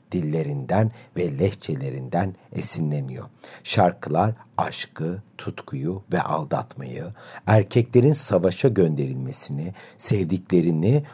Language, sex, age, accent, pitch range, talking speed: Turkish, male, 60-79, native, 85-120 Hz, 70 wpm